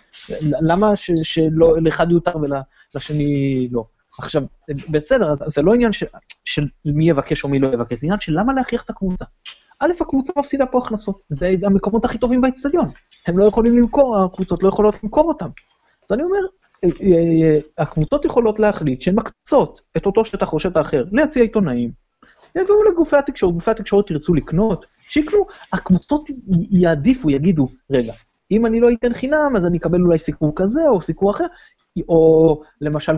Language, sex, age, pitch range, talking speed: Hebrew, male, 30-49, 150-230 Hz, 160 wpm